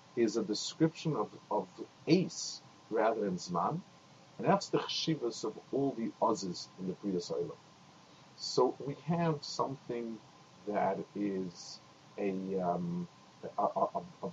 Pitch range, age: 105-160 Hz, 50-69